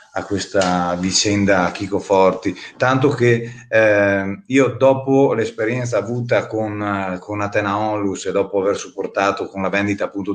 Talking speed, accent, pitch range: 145 wpm, native, 100-125 Hz